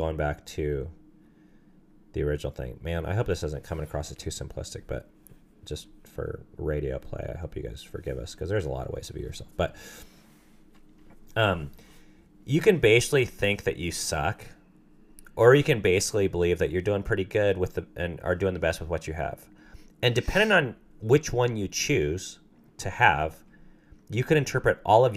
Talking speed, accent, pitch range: 190 wpm, American, 80-105 Hz